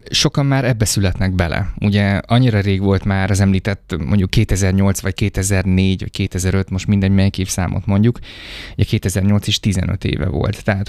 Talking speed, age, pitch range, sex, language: 170 wpm, 20-39, 95-110 Hz, male, Hungarian